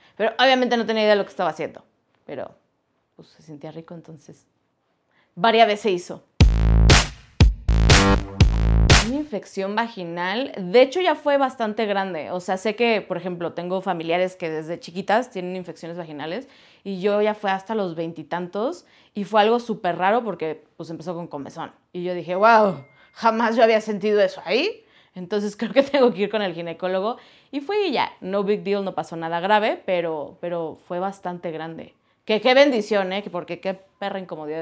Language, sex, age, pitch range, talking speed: Spanish, female, 30-49, 175-215 Hz, 180 wpm